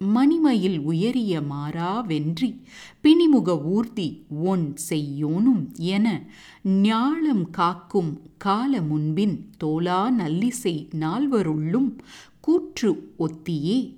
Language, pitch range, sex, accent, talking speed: English, 160-245 Hz, female, Indian, 75 wpm